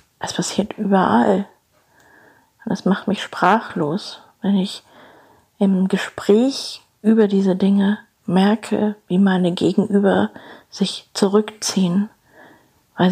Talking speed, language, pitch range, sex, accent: 95 wpm, German, 175-210 Hz, female, German